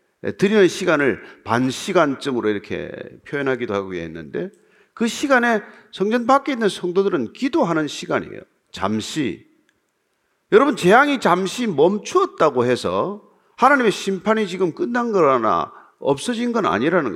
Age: 40-59